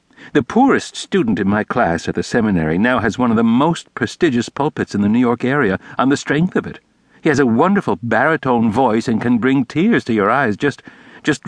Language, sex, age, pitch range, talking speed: English, male, 60-79, 100-160 Hz, 220 wpm